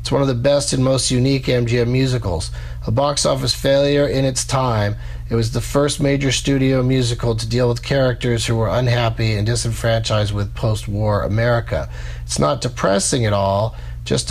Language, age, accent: English, 40-59, American